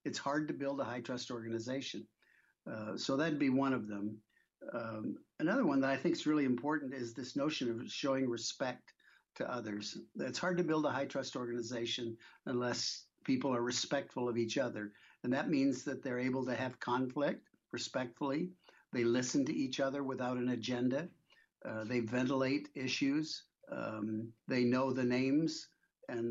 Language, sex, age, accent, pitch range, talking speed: English, male, 60-79, American, 120-140 Hz, 165 wpm